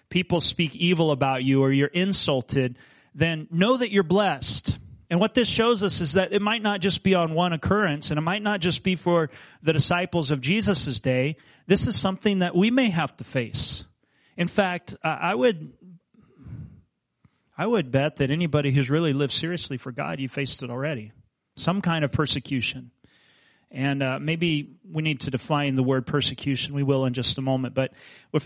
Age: 40-59